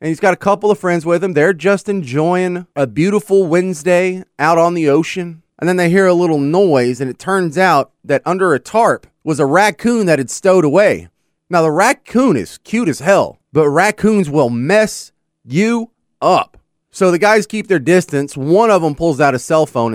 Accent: American